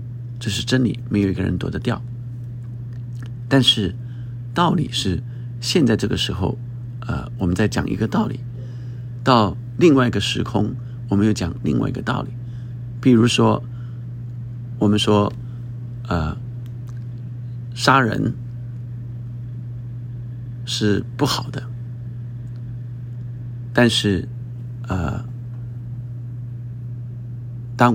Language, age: Chinese, 50-69